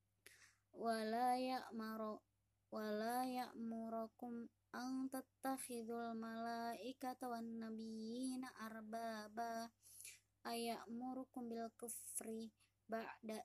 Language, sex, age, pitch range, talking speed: Indonesian, male, 20-39, 220-245 Hz, 60 wpm